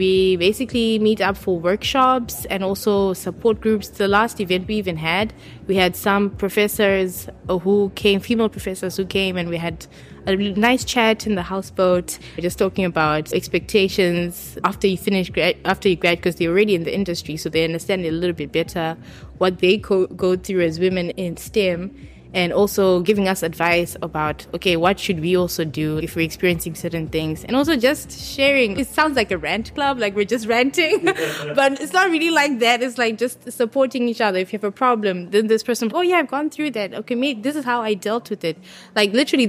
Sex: female